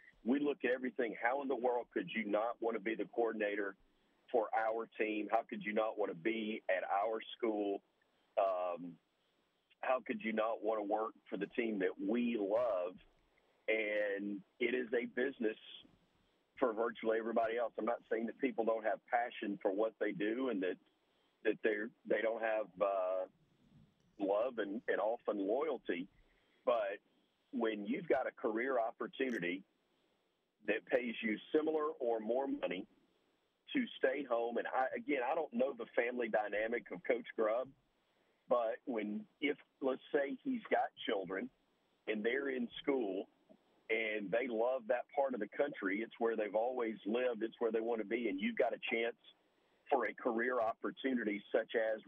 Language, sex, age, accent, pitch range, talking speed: English, male, 40-59, American, 110-120 Hz, 170 wpm